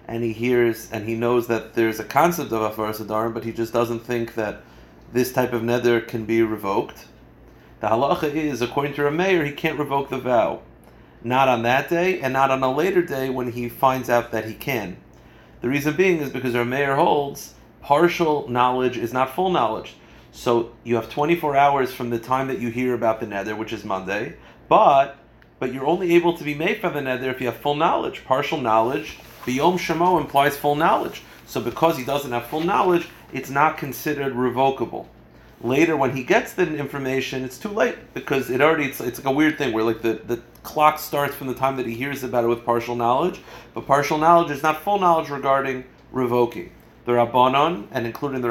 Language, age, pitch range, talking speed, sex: English, 40-59, 120-150 Hz, 210 wpm, male